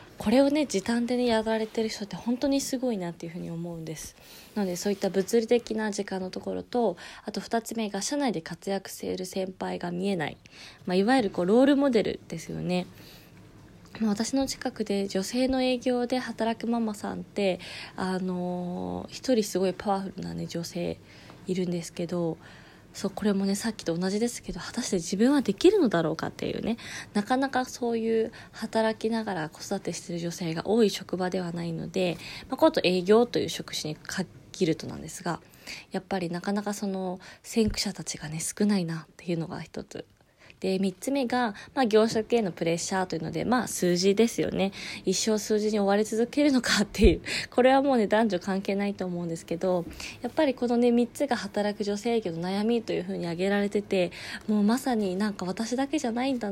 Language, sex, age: Japanese, female, 20-39